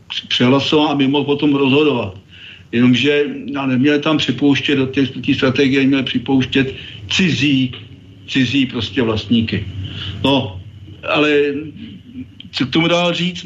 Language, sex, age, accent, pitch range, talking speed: Czech, male, 50-69, native, 125-145 Hz, 125 wpm